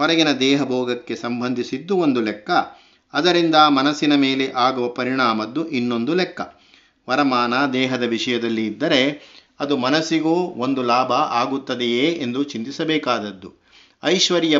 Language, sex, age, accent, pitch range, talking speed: Kannada, male, 50-69, native, 120-150 Hz, 105 wpm